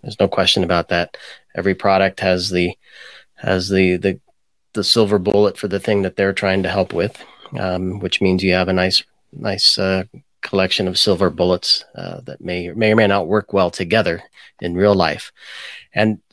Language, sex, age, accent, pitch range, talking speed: English, male, 30-49, American, 90-105 Hz, 190 wpm